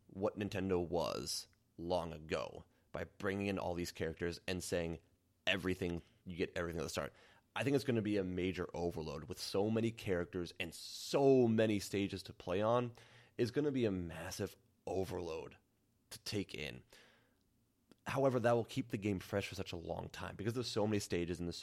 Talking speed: 190 wpm